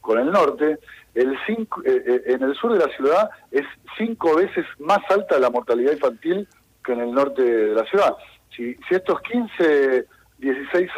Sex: male